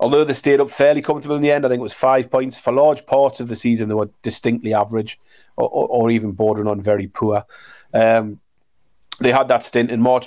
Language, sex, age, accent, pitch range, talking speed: English, male, 30-49, British, 115-135 Hz, 235 wpm